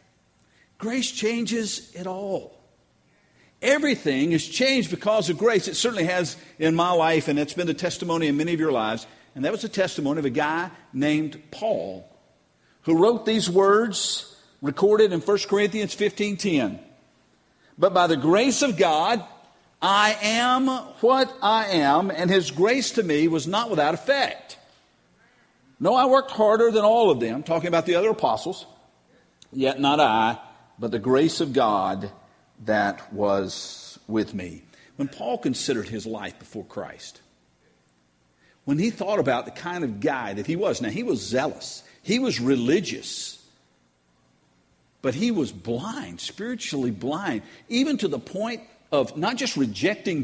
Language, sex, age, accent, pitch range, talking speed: English, male, 50-69, American, 135-220 Hz, 155 wpm